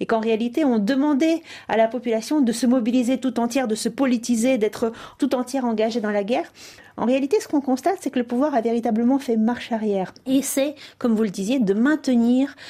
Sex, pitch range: female, 215-270 Hz